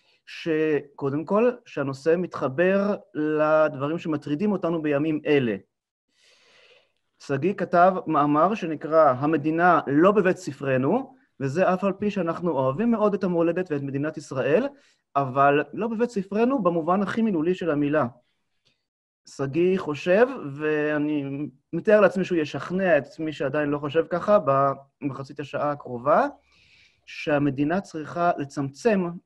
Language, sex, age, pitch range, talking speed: Hebrew, male, 30-49, 145-210 Hz, 115 wpm